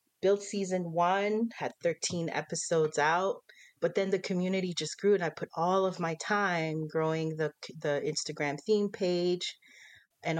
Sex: female